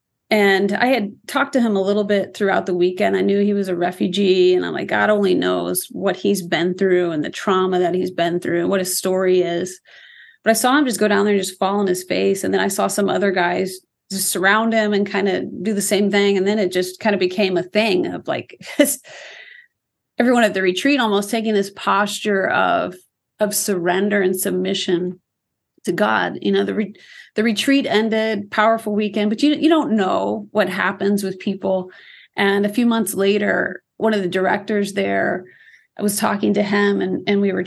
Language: English